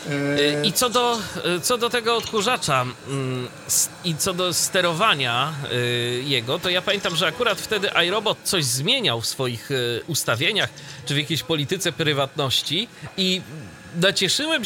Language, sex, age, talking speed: Polish, male, 40-59, 125 wpm